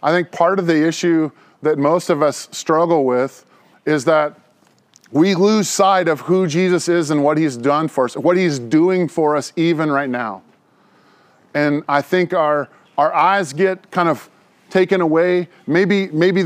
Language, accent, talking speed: English, American, 175 wpm